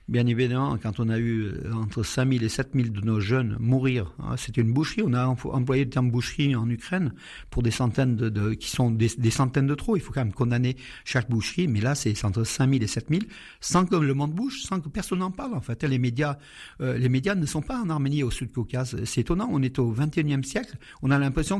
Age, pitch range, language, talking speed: 50-69, 120-155 Hz, French, 240 wpm